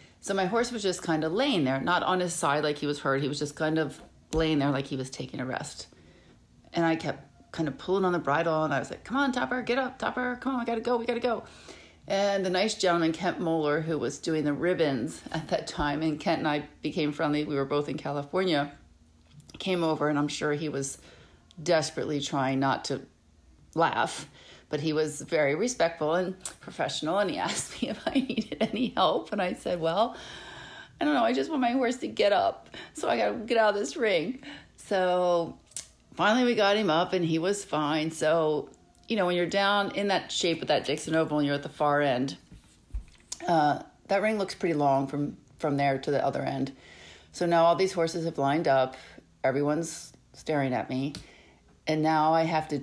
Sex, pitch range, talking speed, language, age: female, 145-185 Hz, 220 wpm, English, 40-59